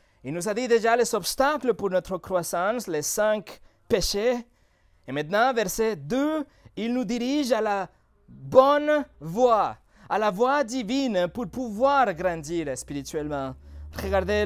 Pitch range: 150-235 Hz